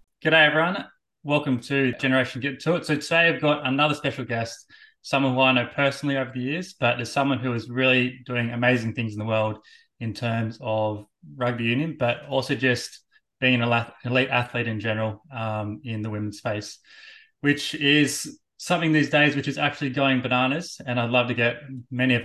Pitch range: 120-145 Hz